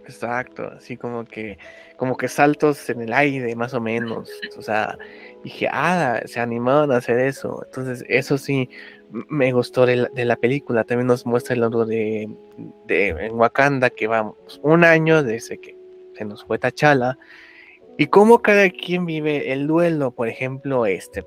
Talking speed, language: 175 wpm, Spanish